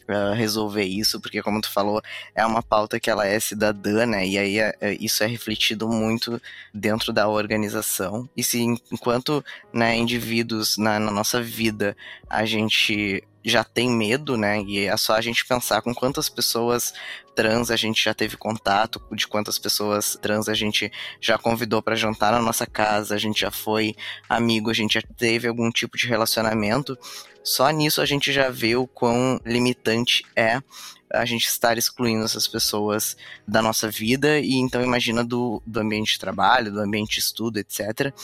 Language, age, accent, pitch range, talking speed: Portuguese, 10-29, Brazilian, 105-120 Hz, 175 wpm